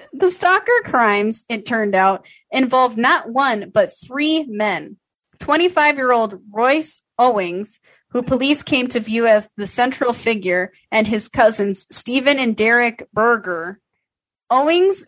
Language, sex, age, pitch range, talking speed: English, female, 30-49, 200-250 Hz, 125 wpm